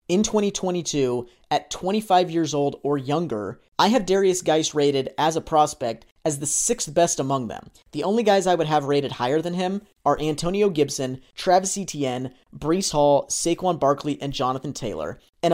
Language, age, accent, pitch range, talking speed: English, 30-49, American, 145-185 Hz, 175 wpm